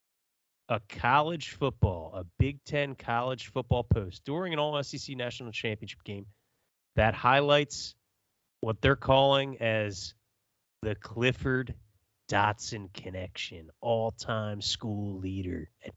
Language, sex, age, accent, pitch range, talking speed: English, male, 30-49, American, 105-135 Hz, 105 wpm